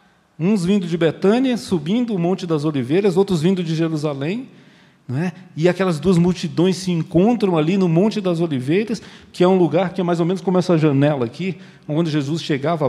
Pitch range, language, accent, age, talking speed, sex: 130-180 Hz, Portuguese, Brazilian, 40-59, 195 wpm, male